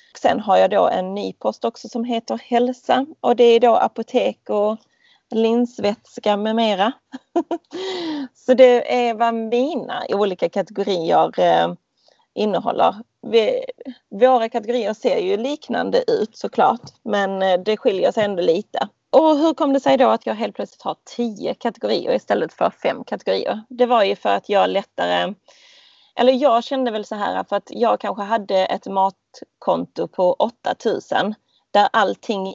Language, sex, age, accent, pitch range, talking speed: Swedish, female, 30-49, native, 195-255 Hz, 155 wpm